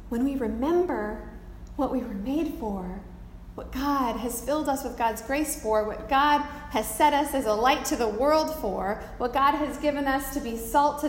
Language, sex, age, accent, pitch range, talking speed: English, female, 30-49, American, 180-275 Hz, 205 wpm